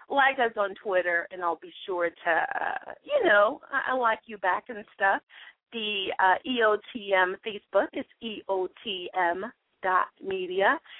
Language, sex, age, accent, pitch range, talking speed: English, female, 30-49, American, 175-240 Hz, 145 wpm